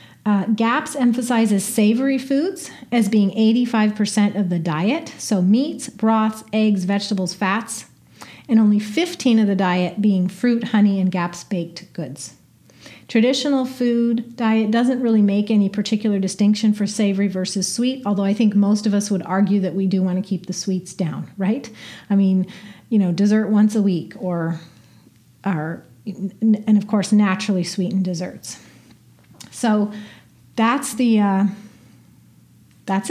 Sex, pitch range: female, 190-230 Hz